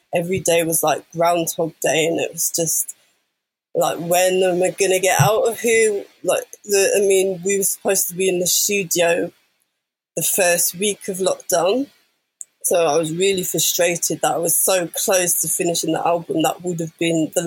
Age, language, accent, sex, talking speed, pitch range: 20-39, English, British, female, 190 wpm, 170-200 Hz